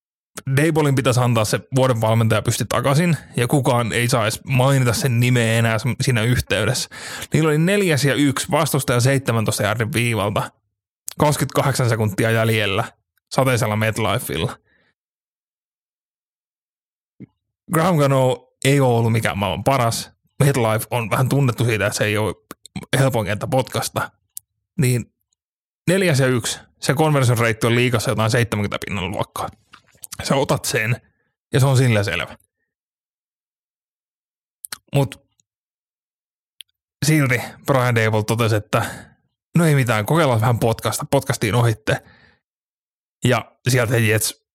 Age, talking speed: 30-49, 120 wpm